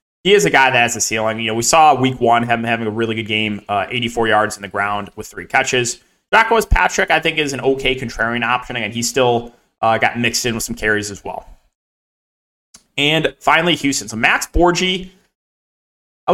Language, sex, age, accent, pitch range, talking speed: English, male, 20-39, American, 115-155 Hz, 215 wpm